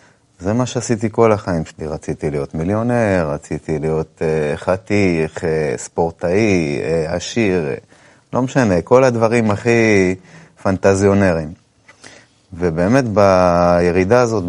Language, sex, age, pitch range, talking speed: Hebrew, male, 30-49, 85-125 Hz, 95 wpm